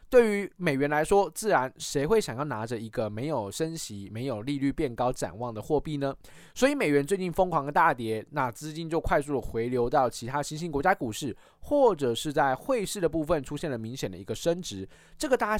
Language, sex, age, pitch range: Chinese, male, 20-39, 125-180 Hz